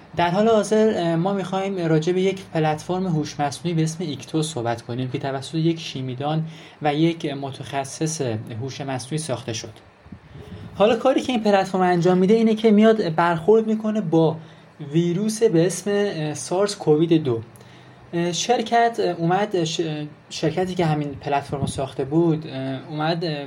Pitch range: 140-175 Hz